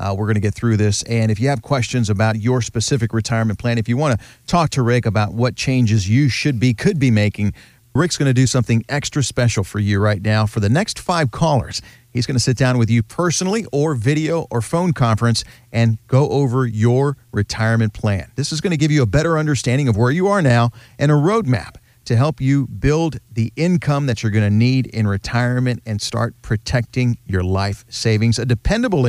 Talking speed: 220 wpm